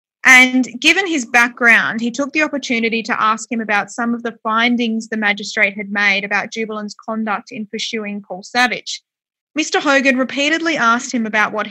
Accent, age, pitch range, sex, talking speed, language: Australian, 20-39, 220-255 Hz, female, 175 wpm, English